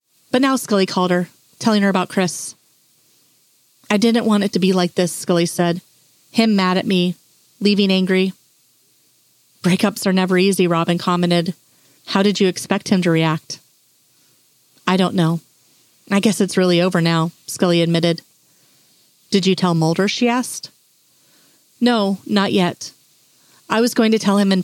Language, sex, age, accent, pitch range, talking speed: English, female, 30-49, American, 170-210 Hz, 160 wpm